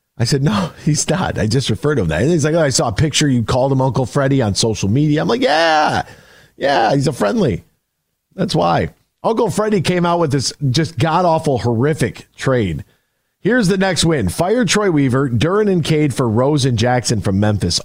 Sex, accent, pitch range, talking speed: male, American, 120-160 Hz, 205 wpm